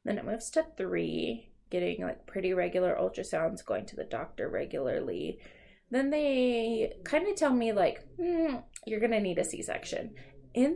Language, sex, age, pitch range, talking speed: English, female, 20-39, 175-235 Hz, 160 wpm